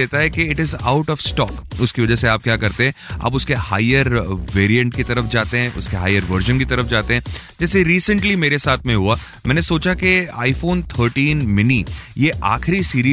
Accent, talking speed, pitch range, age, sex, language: native, 120 wpm, 105-140 Hz, 30-49, male, Hindi